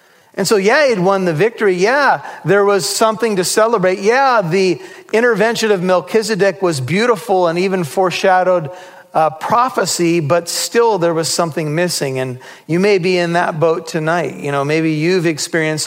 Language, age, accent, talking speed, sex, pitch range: English, 40-59, American, 165 wpm, male, 150-185 Hz